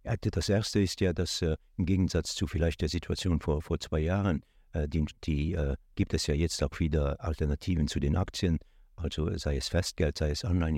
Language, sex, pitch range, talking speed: French, male, 75-90 Hz, 195 wpm